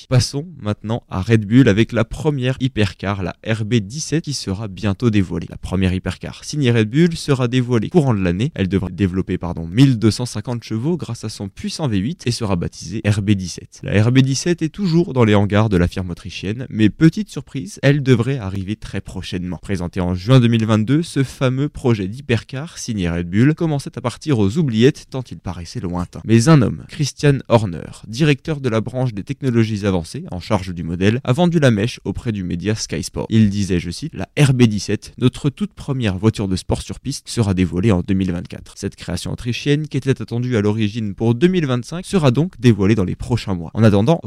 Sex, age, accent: male, 20-39, French